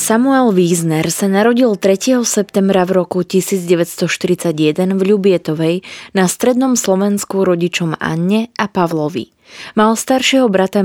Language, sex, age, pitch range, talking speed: Slovak, female, 20-39, 170-210 Hz, 115 wpm